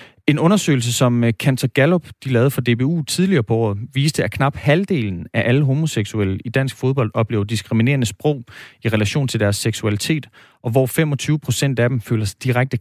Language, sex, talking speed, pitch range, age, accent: Danish, male, 185 wpm, 115-145 Hz, 30-49, native